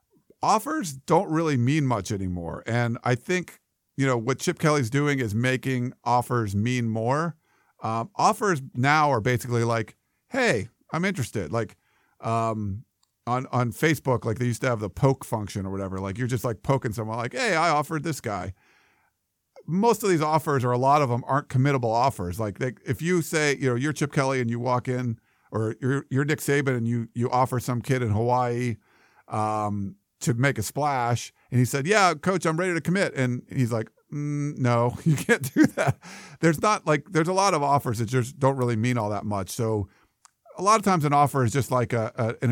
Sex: male